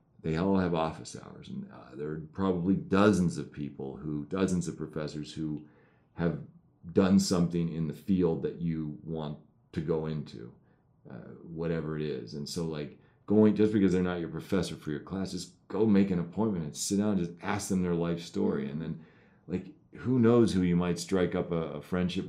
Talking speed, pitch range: 200 wpm, 80-95 Hz